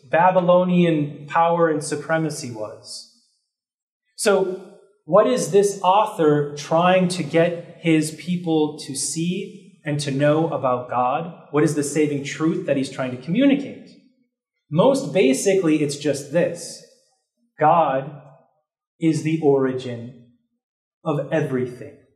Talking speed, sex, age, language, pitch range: 115 wpm, male, 30-49, English, 140-180 Hz